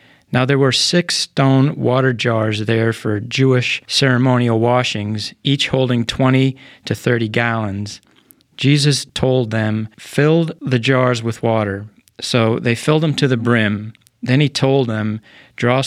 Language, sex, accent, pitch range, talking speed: English, male, American, 110-135 Hz, 145 wpm